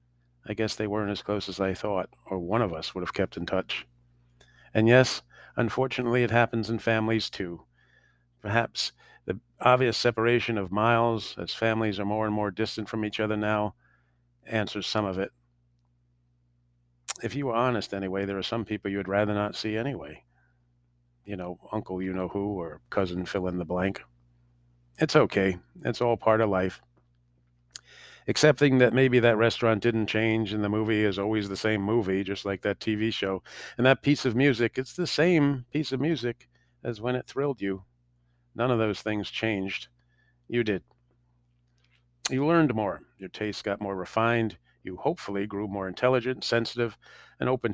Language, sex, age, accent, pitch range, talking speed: English, male, 50-69, American, 90-120 Hz, 170 wpm